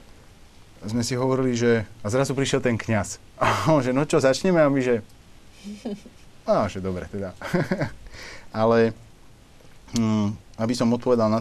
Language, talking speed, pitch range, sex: Slovak, 140 wpm, 95-120 Hz, male